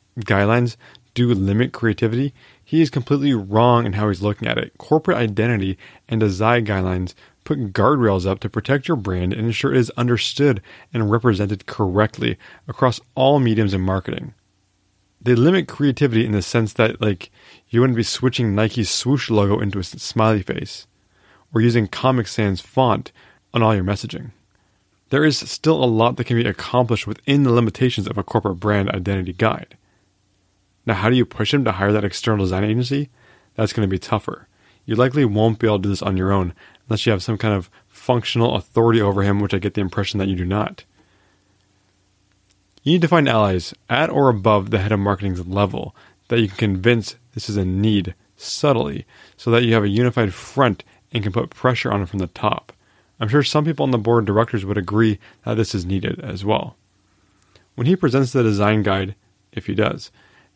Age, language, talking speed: 20-39, English, 195 wpm